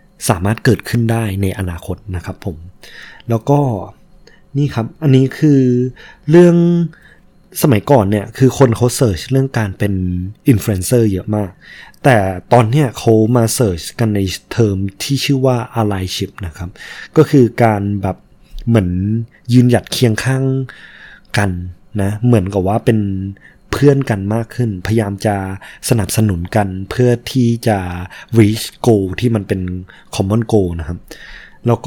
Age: 20-39